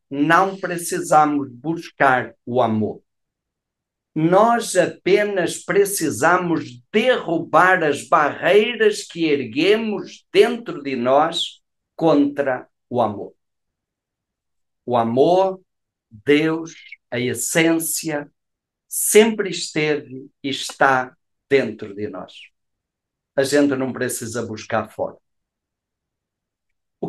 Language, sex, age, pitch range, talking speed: Portuguese, male, 50-69, 130-180 Hz, 85 wpm